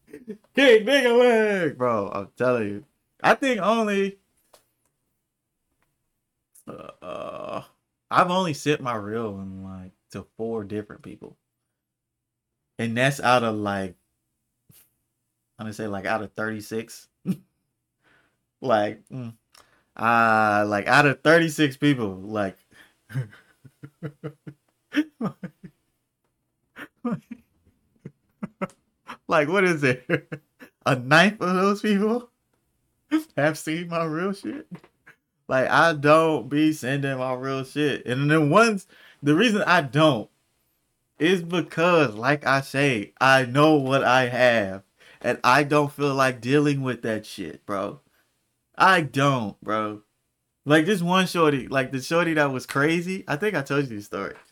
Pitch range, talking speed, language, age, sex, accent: 115-170 Hz, 125 wpm, English, 20-39, male, American